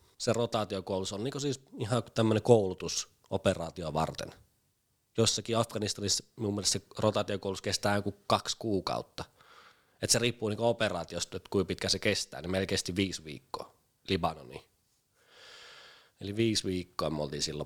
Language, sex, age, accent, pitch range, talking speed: Finnish, male, 20-39, native, 90-120 Hz, 135 wpm